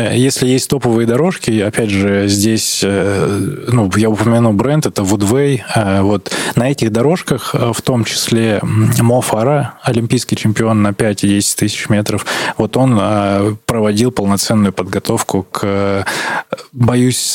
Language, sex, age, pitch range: Russian, male, 20-39, 100-120 Hz